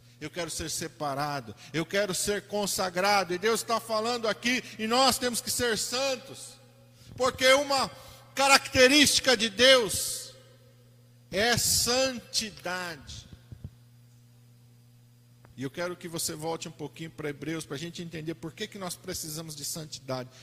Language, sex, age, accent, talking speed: Portuguese, male, 50-69, Brazilian, 140 wpm